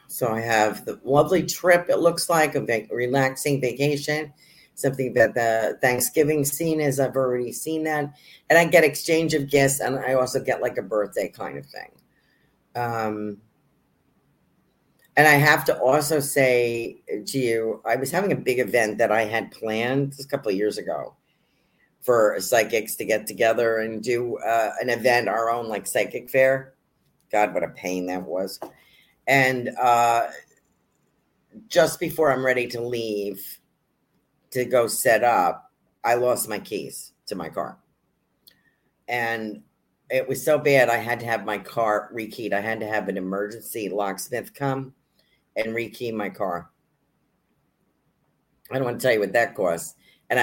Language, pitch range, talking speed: English, 110-140 Hz, 165 wpm